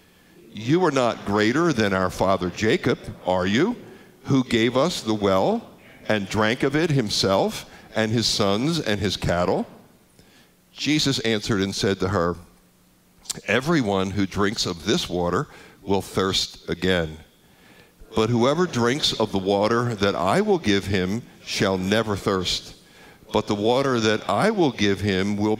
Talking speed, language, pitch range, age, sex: 150 wpm, English, 95-115 Hz, 60-79, male